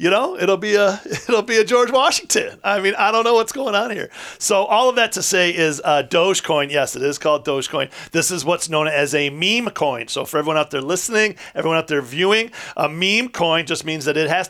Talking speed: 245 wpm